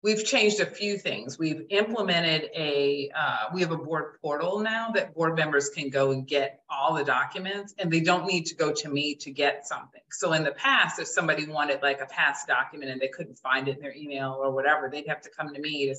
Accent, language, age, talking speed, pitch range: American, English, 40-59, 240 wpm, 140-190 Hz